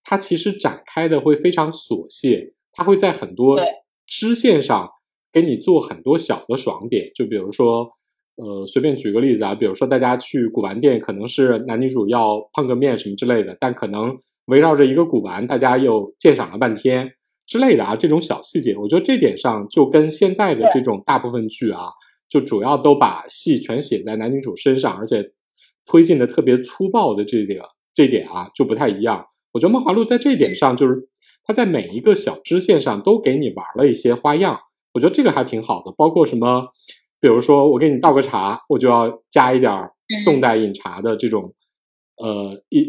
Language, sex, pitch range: Chinese, male, 115-155 Hz